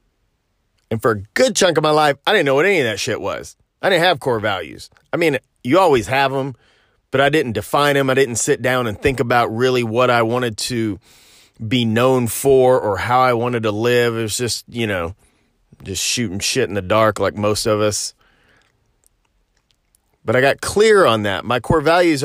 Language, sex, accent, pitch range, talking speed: English, male, American, 110-145 Hz, 210 wpm